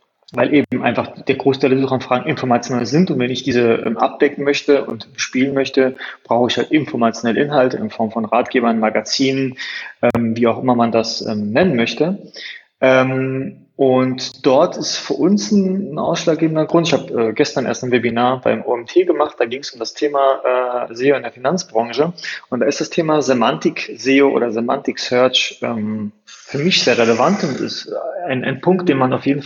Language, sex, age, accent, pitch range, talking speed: German, male, 20-39, German, 120-155 Hz, 190 wpm